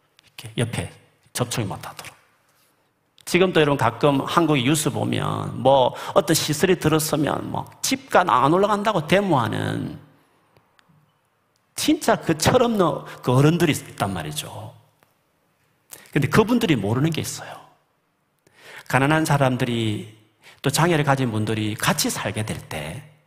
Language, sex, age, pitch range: Korean, male, 40-59, 120-170 Hz